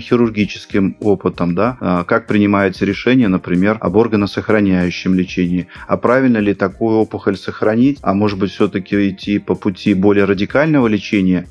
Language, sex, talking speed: Russian, male, 135 wpm